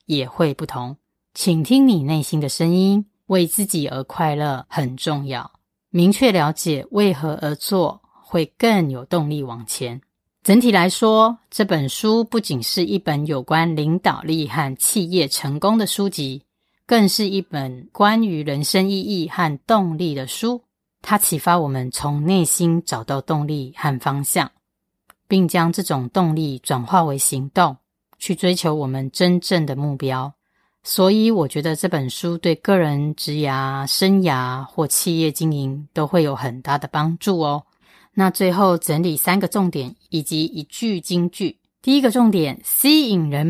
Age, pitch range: 20-39, 145-185 Hz